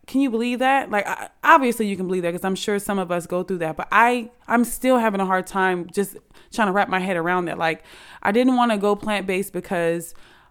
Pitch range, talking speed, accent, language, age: 170-215 Hz, 250 wpm, American, English, 20-39